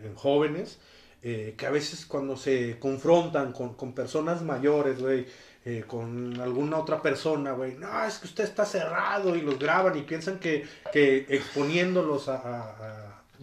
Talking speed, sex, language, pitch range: 160 wpm, male, Spanish, 135-180 Hz